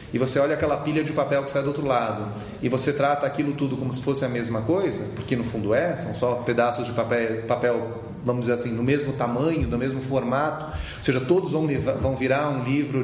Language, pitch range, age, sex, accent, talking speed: Portuguese, 130-170 Hz, 30-49, male, Brazilian, 230 wpm